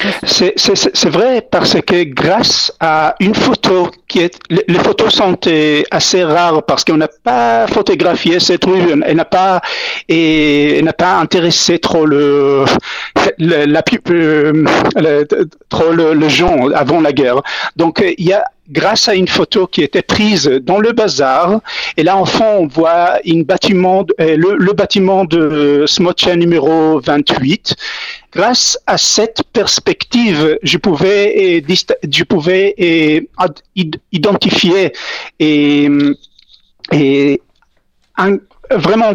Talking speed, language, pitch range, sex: 125 wpm, French, 160-205 Hz, male